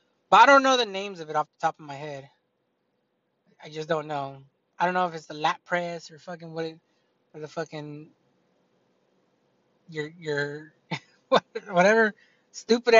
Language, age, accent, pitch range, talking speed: English, 20-39, American, 155-190 Hz, 170 wpm